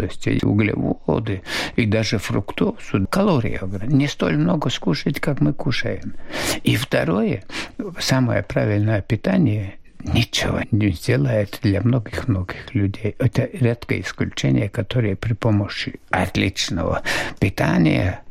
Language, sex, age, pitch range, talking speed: Russian, male, 60-79, 95-120 Hz, 105 wpm